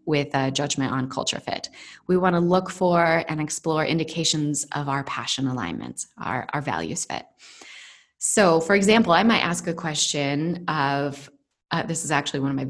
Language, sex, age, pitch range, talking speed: English, female, 20-39, 145-180 Hz, 180 wpm